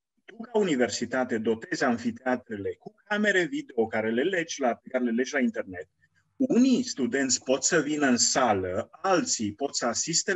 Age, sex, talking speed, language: 30-49, male, 145 wpm, Romanian